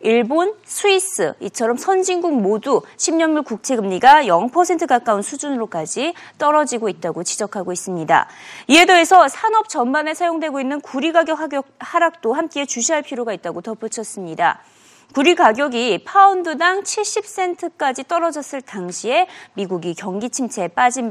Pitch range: 220-335 Hz